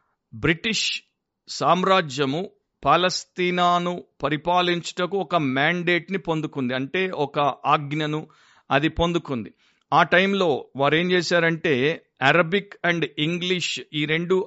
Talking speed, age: 95 wpm, 50-69